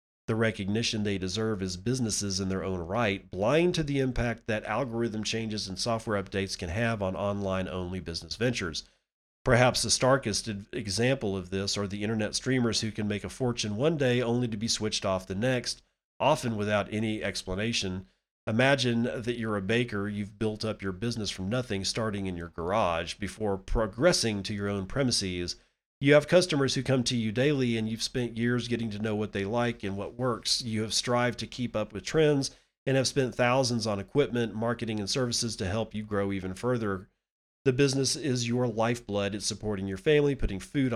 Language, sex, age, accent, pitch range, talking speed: English, male, 40-59, American, 100-125 Hz, 190 wpm